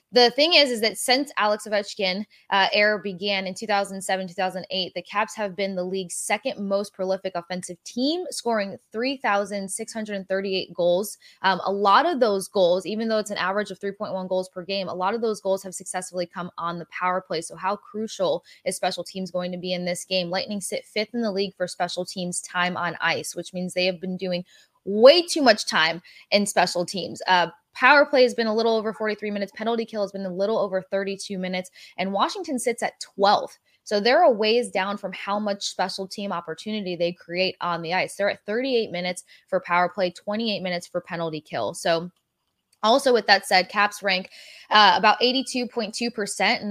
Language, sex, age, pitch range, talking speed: English, female, 20-39, 185-215 Hz, 200 wpm